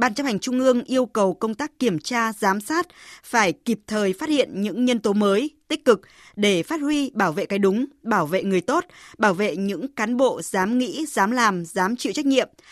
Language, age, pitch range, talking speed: Vietnamese, 20-39, 200-255 Hz, 225 wpm